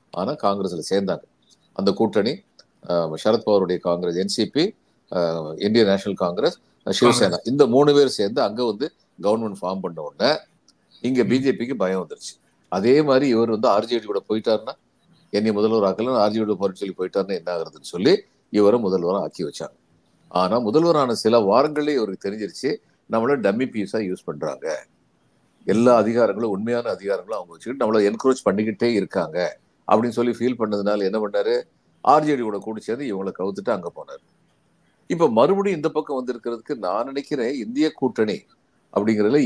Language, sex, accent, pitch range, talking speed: Tamil, male, native, 100-130 Hz, 135 wpm